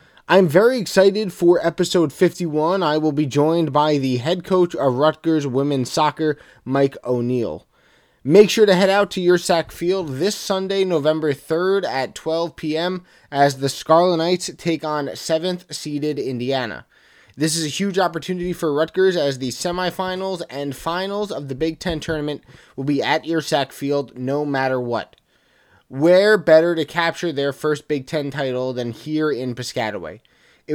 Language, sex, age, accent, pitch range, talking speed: English, male, 20-39, American, 140-175 Hz, 160 wpm